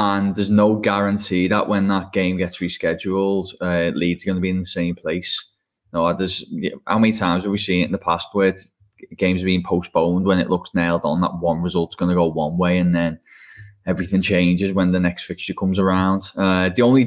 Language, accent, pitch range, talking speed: English, British, 85-100 Hz, 230 wpm